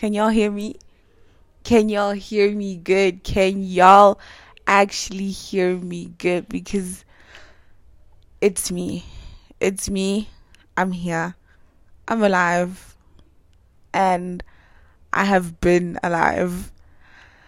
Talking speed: 100 wpm